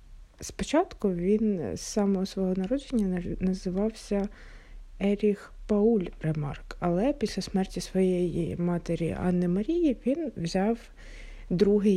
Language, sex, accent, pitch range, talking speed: Ukrainian, female, native, 175-210 Hz, 100 wpm